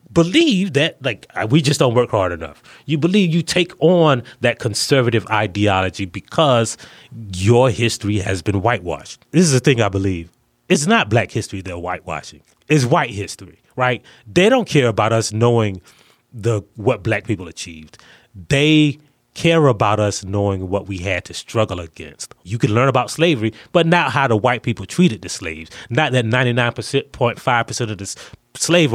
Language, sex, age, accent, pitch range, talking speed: English, male, 30-49, American, 110-145 Hz, 170 wpm